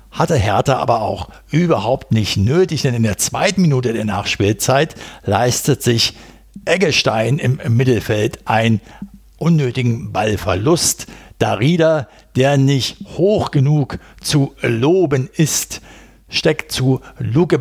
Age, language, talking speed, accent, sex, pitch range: 60-79, German, 110 wpm, German, male, 110-140 Hz